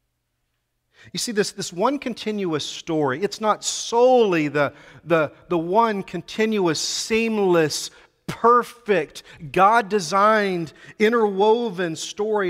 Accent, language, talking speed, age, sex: American, English, 90 wpm, 50-69, male